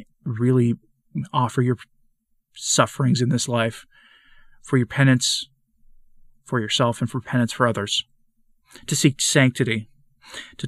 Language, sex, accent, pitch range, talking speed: English, male, American, 120-140 Hz, 120 wpm